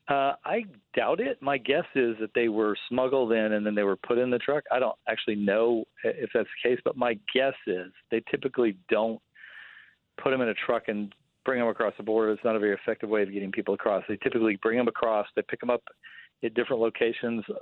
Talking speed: 230 wpm